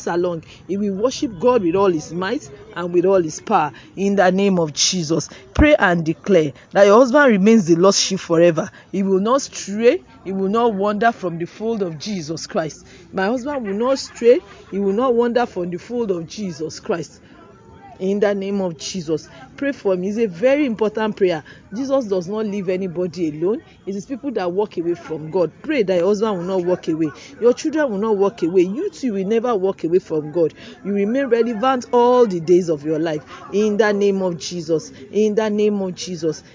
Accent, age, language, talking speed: Nigerian, 40-59, English, 210 wpm